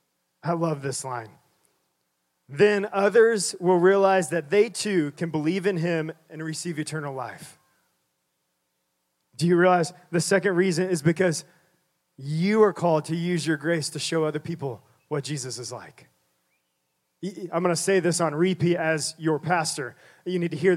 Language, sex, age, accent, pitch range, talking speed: English, male, 20-39, American, 160-195 Hz, 160 wpm